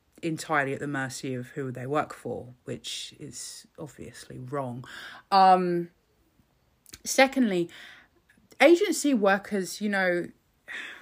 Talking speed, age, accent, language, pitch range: 105 wpm, 20-39, British, English, 155-220 Hz